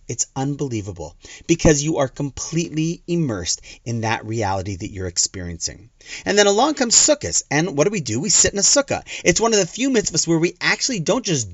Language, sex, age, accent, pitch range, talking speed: English, male, 30-49, American, 125-200 Hz, 205 wpm